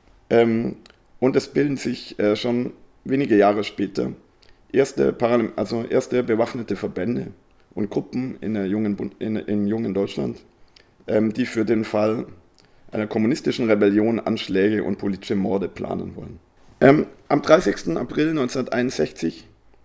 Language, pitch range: German, 105-125 Hz